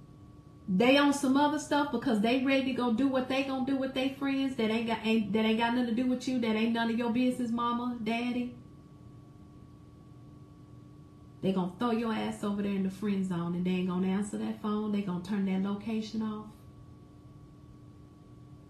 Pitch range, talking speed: 165-230 Hz, 200 wpm